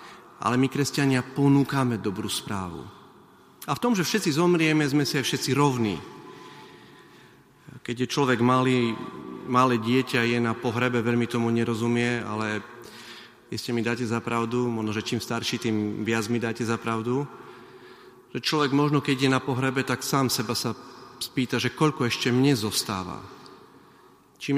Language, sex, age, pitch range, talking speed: Slovak, male, 30-49, 110-135 Hz, 150 wpm